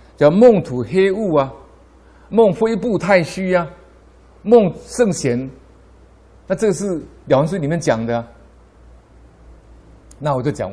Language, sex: Chinese, male